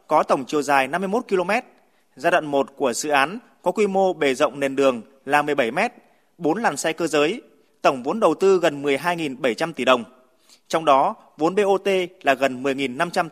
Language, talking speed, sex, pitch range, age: Vietnamese, 185 wpm, male, 140-185 Hz, 20-39